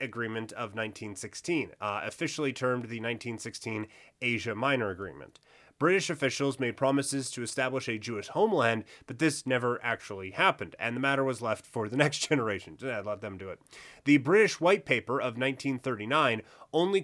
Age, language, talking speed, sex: 30-49, English, 160 wpm, male